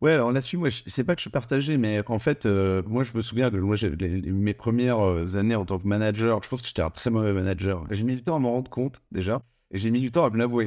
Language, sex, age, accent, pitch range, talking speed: French, male, 50-69, French, 95-125 Hz, 310 wpm